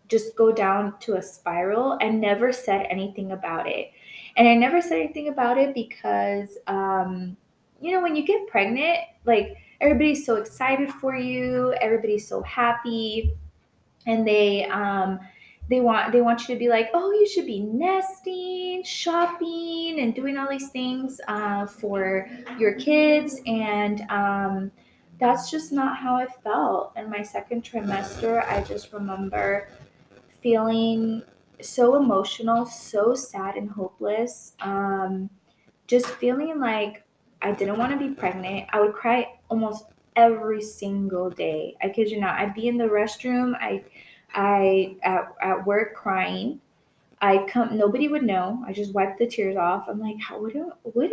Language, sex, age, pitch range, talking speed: English, female, 20-39, 200-250 Hz, 155 wpm